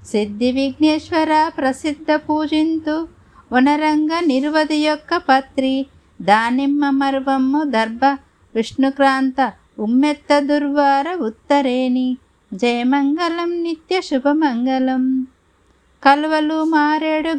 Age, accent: 50-69, native